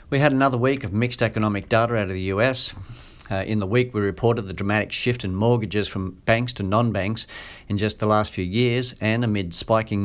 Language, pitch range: English, 95-120 Hz